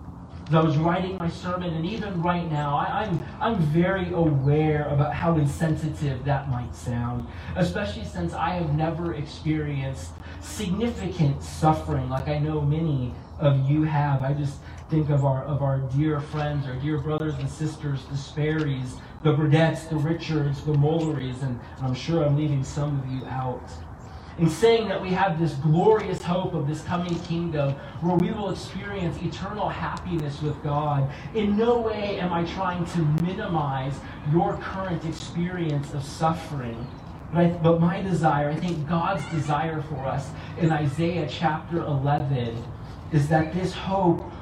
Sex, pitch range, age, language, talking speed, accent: male, 135-170 Hz, 20-39, English, 155 wpm, American